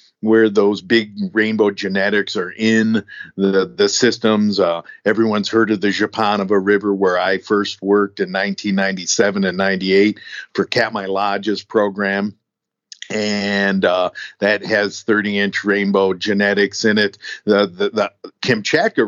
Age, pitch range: 50-69, 100-110 Hz